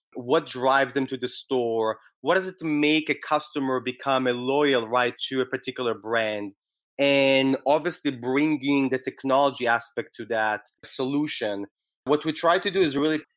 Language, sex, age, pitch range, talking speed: English, male, 20-39, 125-145 Hz, 165 wpm